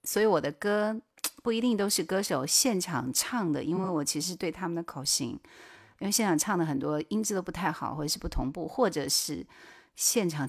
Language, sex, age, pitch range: Chinese, female, 30-49, 155-220 Hz